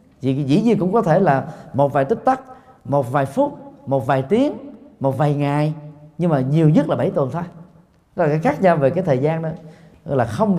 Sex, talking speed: male, 225 wpm